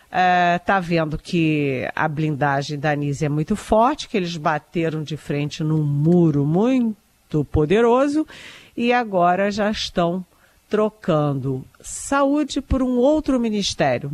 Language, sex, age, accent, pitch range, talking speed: Portuguese, female, 50-69, Brazilian, 155-215 Hz, 125 wpm